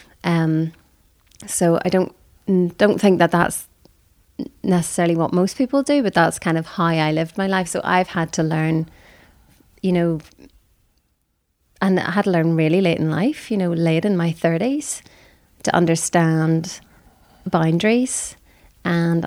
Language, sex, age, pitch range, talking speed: English, female, 30-49, 170-225 Hz, 150 wpm